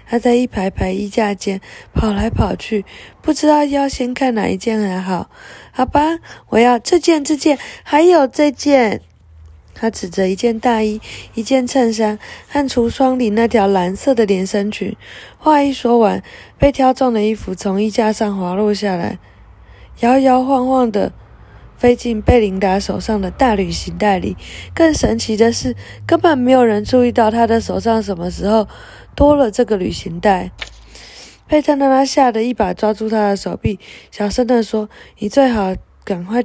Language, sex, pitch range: Chinese, female, 200-260 Hz